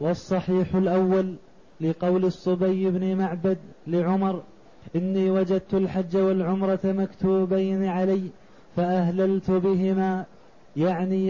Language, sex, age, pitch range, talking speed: Arabic, male, 20-39, 185-195 Hz, 85 wpm